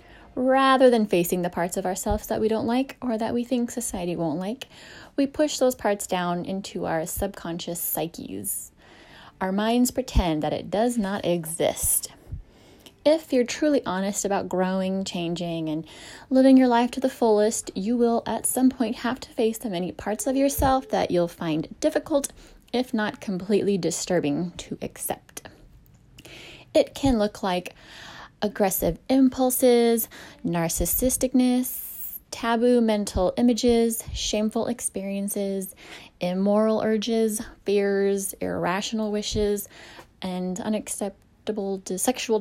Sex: female